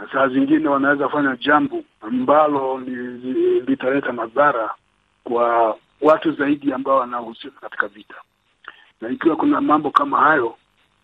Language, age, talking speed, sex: Swahili, 50-69, 125 wpm, male